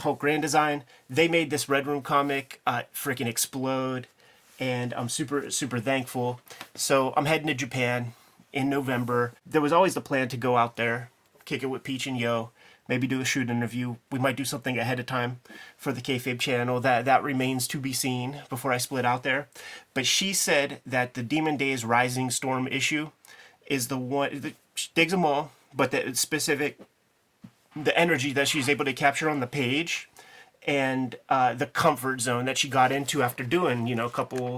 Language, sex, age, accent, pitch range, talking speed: English, male, 30-49, American, 125-145 Hz, 195 wpm